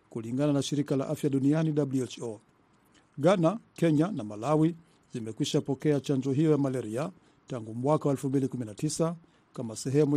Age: 50-69